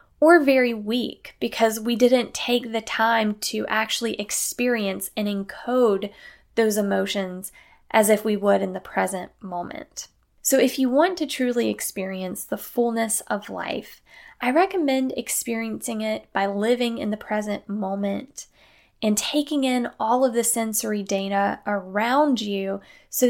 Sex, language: female, English